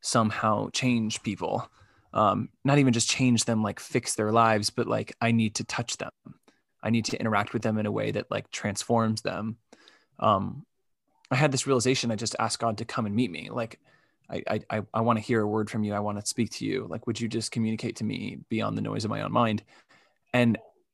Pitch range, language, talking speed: 110-125 Hz, English, 225 wpm